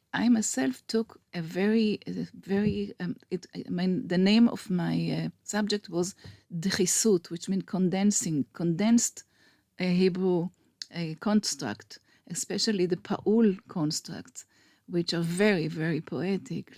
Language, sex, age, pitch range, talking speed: English, female, 40-59, 170-205 Hz, 130 wpm